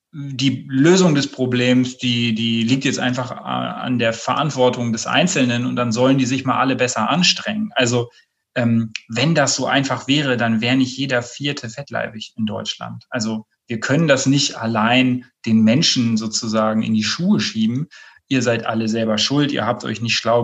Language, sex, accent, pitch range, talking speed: German, male, German, 115-145 Hz, 175 wpm